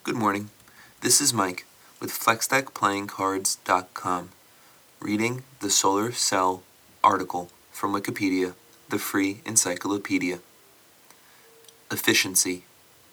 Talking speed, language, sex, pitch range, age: 80 wpm, English, male, 95-115 Hz, 30-49